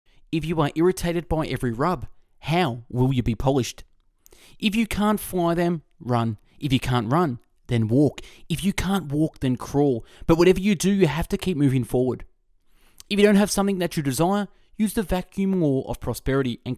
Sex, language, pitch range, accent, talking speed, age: male, English, 120-175 Hz, Australian, 195 wpm, 20-39